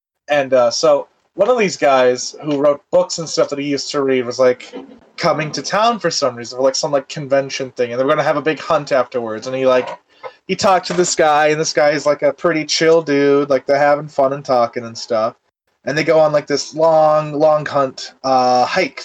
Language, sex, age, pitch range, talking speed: English, male, 20-39, 135-165 Hz, 245 wpm